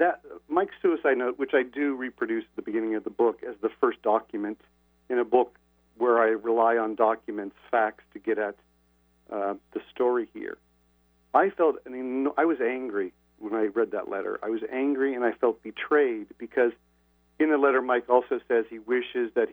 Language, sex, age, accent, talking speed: English, male, 50-69, American, 195 wpm